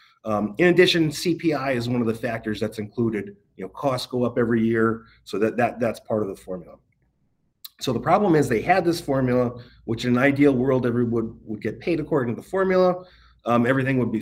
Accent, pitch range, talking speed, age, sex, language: American, 115-150 Hz, 220 wpm, 30-49, male, English